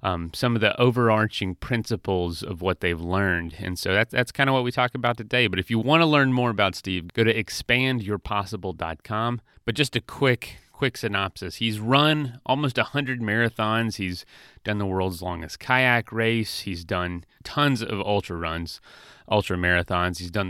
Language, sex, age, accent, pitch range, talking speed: English, male, 30-49, American, 90-120 Hz, 175 wpm